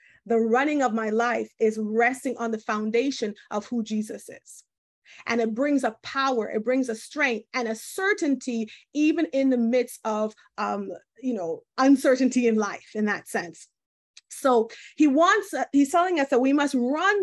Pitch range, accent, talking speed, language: 240-330 Hz, American, 180 wpm, English